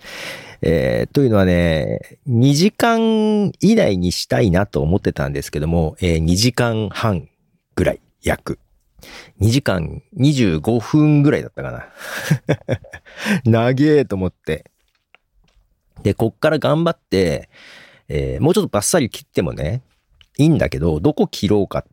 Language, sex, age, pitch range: Japanese, male, 40-59, 90-150 Hz